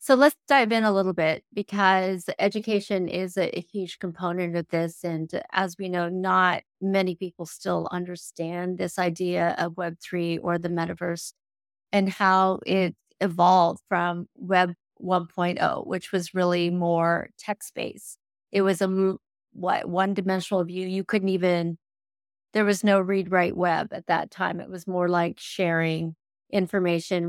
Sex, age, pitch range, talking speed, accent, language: female, 30-49, 175-195 Hz, 155 wpm, American, English